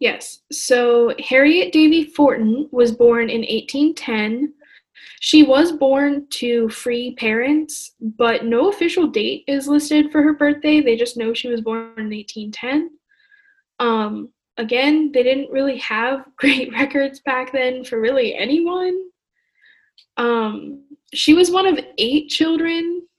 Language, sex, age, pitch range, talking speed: English, female, 10-29, 235-300 Hz, 135 wpm